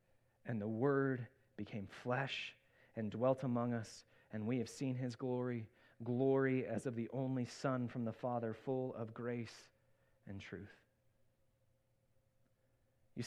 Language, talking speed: English, 135 wpm